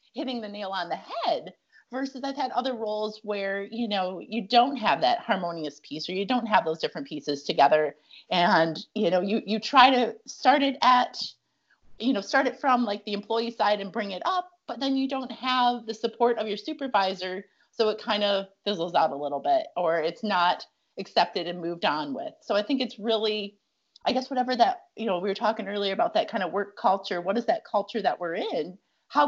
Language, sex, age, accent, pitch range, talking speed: English, female, 30-49, American, 190-250 Hz, 220 wpm